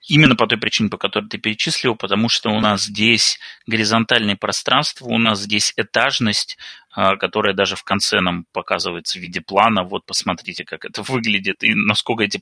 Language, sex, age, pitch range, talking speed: Russian, male, 30-49, 105-120 Hz, 175 wpm